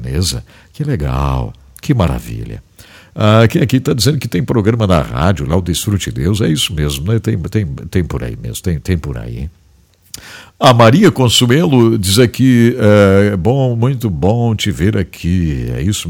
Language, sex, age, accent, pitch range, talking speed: English, male, 60-79, Brazilian, 80-115 Hz, 170 wpm